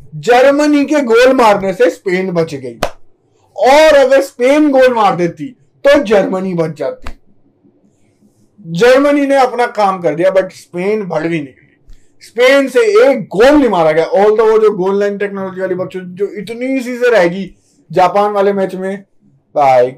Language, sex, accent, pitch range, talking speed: Hindi, male, native, 185-270 Hz, 160 wpm